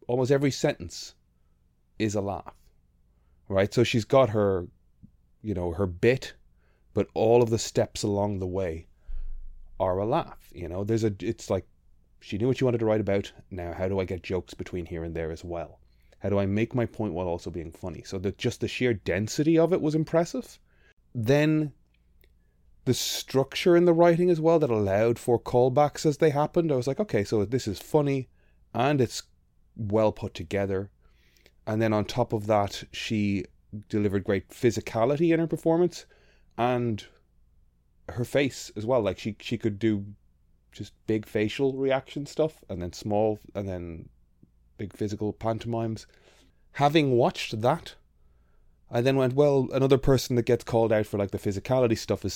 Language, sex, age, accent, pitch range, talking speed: English, male, 20-39, Irish, 85-125 Hz, 180 wpm